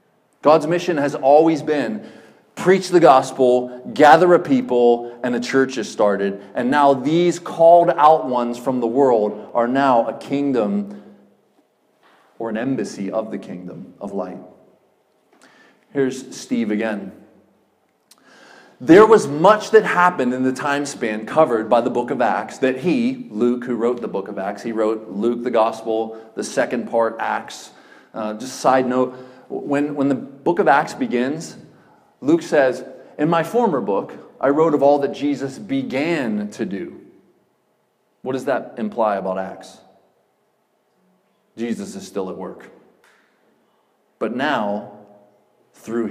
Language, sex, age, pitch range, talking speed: English, male, 30-49, 115-165 Hz, 145 wpm